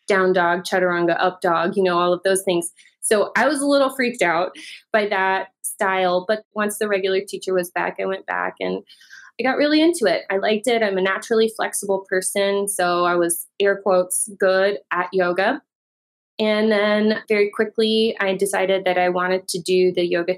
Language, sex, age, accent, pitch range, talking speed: English, female, 20-39, American, 180-220 Hz, 195 wpm